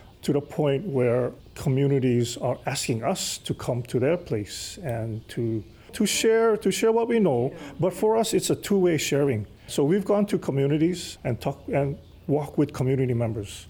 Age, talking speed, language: 40-59, 180 wpm, English